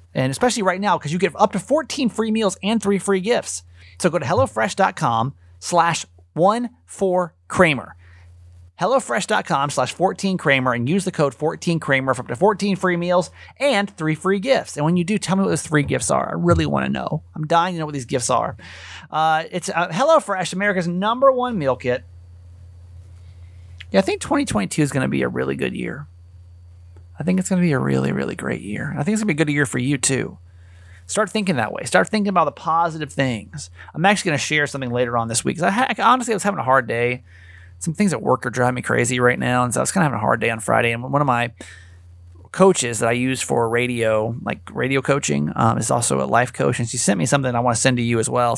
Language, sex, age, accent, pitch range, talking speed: English, male, 30-49, American, 110-185 Hz, 235 wpm